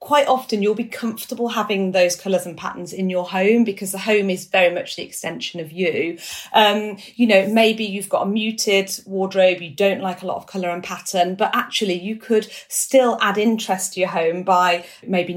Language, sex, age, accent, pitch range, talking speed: English, female, 30-49, British, 170-200 Hz, 205 wpm